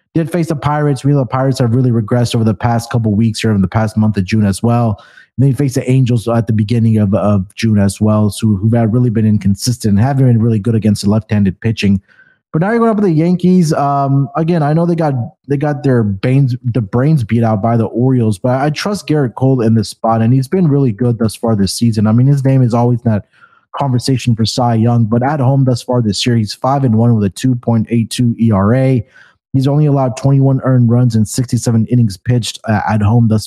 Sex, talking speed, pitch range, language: male, 250 wpm, 110-140 Hz, English